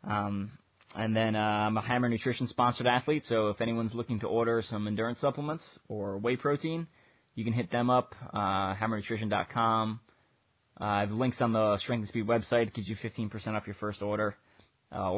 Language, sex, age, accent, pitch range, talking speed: English, male, 20-39, American, 105-120 Hz, 185 wpm